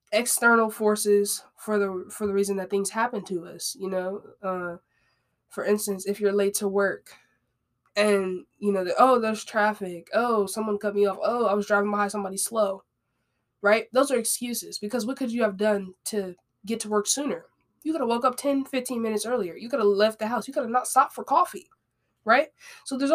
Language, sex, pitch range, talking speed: English, female, 195-240 Hz, 210 wpm